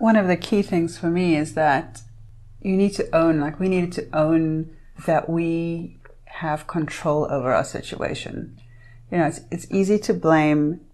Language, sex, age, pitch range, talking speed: English, female, 30-49, 150-175 Hz, 175 wpm